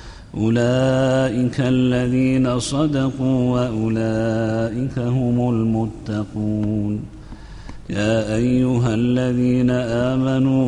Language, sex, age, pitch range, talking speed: Arabic, male, 50-69, 110-125 Hz, 55 wpm